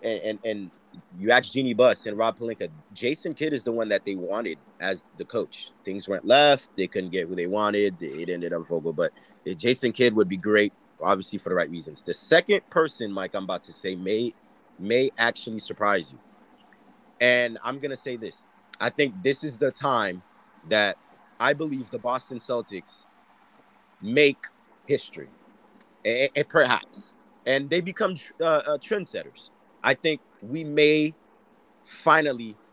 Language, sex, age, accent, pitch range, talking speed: English, male, 30-49, American, 100-135 Hz, 170 wpm